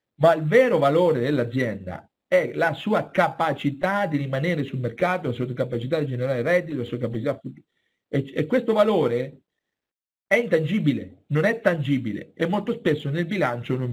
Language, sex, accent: Italian, male, native